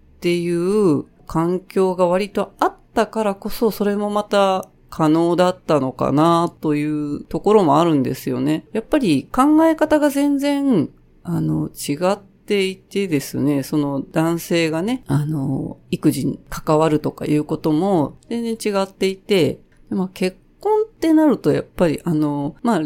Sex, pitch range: female, 155-225 Hz